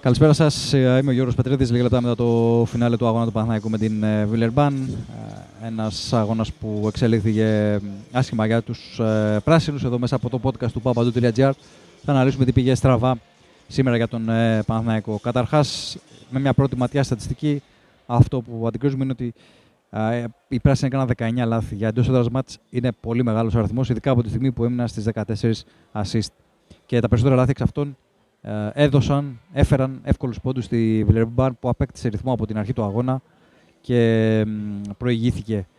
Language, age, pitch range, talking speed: Greek, 20-39, 115-135 Hz, 160 wpm